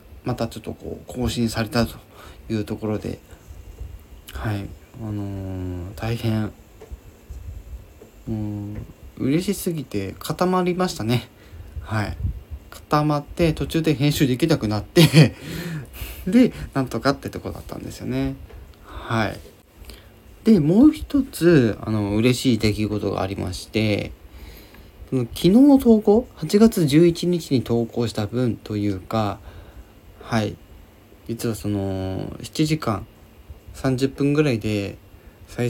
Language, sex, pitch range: Japanese, male, 95-135 Hz